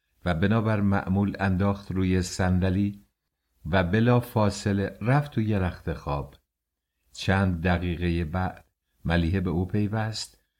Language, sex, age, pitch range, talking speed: English, male, 60-79, 85-110 Hz, 115 wpm